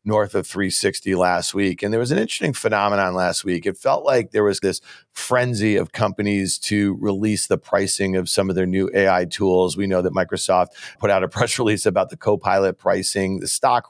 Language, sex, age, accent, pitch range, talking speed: English, male, 40-59, American, 100-125 Hz, 205 wpm